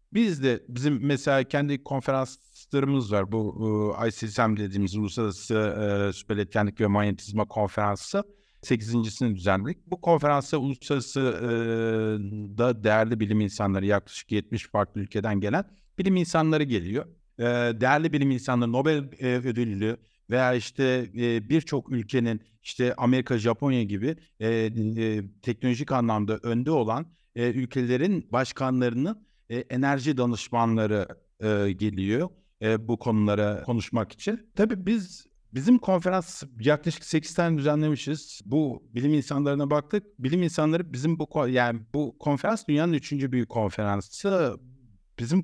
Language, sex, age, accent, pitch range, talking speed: Turkish, male, 50-69, native, 110-150 Hz, 120 wpm